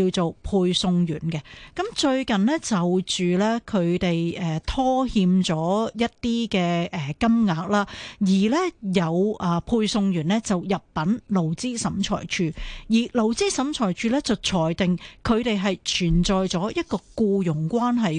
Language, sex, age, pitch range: Chinese, female, 30-49, 175-235 Hz